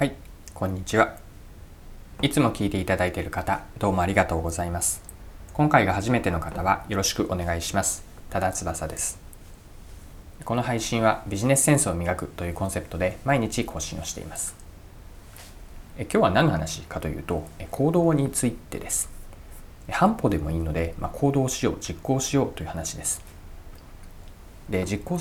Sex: male